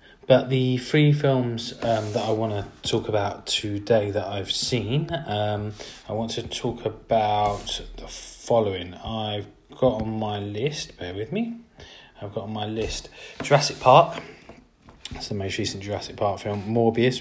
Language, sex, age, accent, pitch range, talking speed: English, male, 30-49, British, 100-115 Hz, 160 wpm